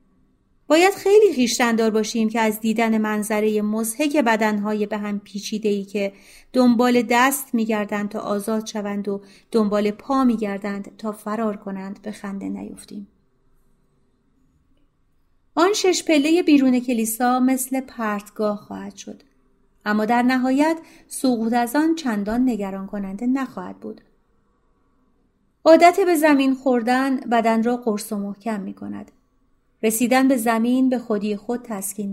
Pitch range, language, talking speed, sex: 210-260 Hz, Persian, 130 wpm, female